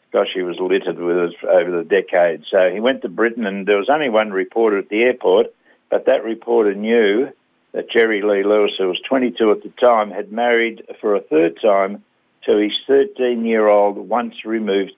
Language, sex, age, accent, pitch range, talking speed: English, male, 60-79, Australian, 100-115 Hz, 185 wpm